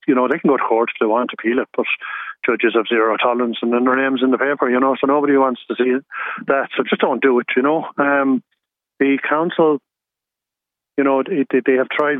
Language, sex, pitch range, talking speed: English, male, 120-135 Hz, 240 wpm